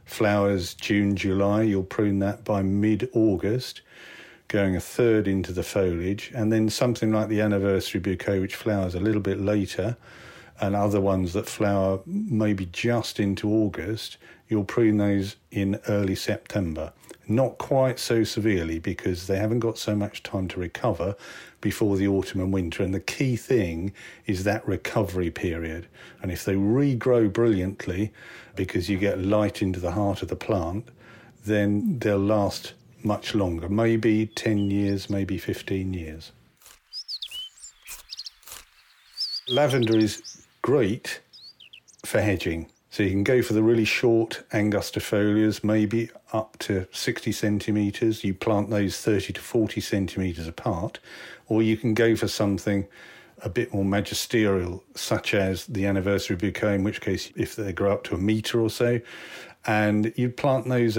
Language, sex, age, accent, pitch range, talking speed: English, male, 50-69, British, 95-110 Hz, 150 wpm